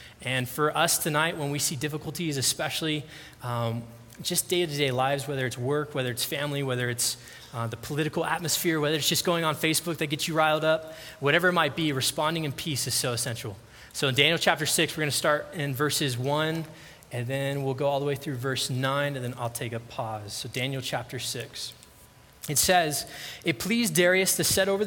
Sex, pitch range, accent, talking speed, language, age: male, 135-165 Hz, American, 210 wpm, English, 20-39